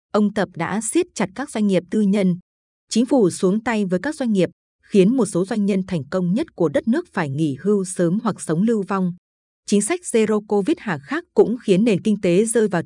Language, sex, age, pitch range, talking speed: Vietnamese, female, 20-39, 180-225 Hz, 235 wpm